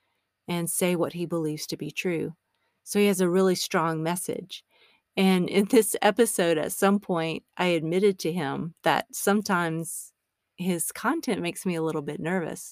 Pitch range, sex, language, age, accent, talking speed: 160-200 Hz, female, English, 40-59, American, 170 wpm